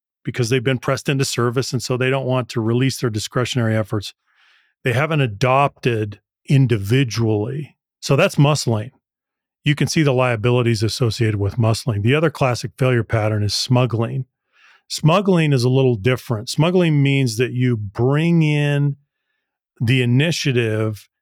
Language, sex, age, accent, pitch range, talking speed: English, male, 40-59, American, 120-145 Hz, 145 wpm